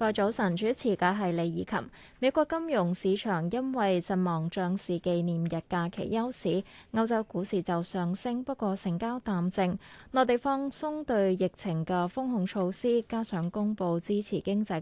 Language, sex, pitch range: Chinese, female, 180-235 Hz